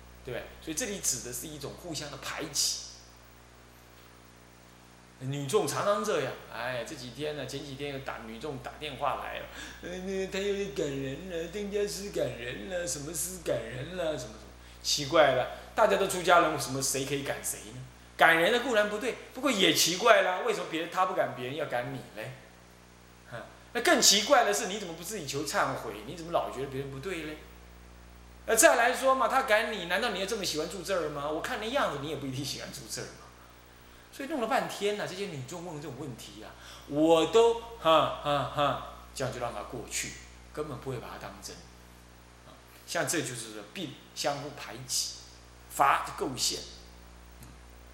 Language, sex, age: Chinese, male, 20-39